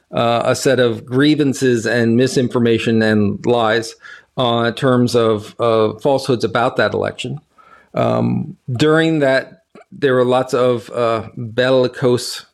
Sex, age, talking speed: male, 40-59, 130 wpm